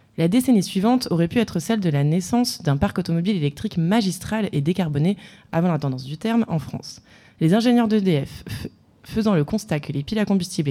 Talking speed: 200 wpm